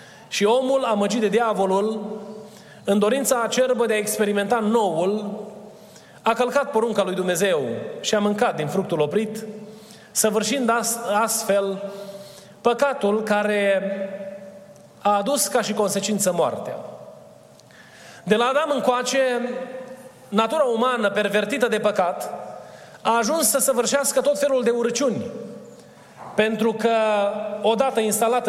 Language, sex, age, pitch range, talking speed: Romanian, male, 30-49, 200-250 Hz, 115 wpm